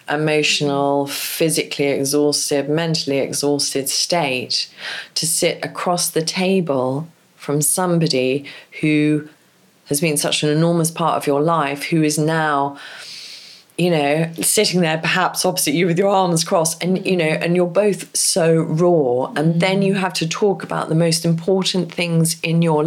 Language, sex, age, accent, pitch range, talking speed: English, female, 30-49, British, 145-175 Hz, 150 wpm